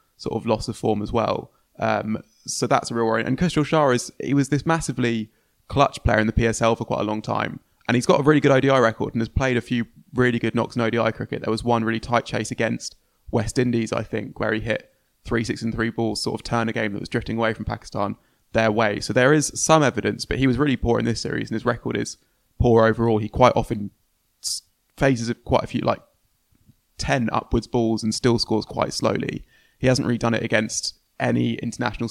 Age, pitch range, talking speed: 20-39, 110-120 Hz, 235 wpm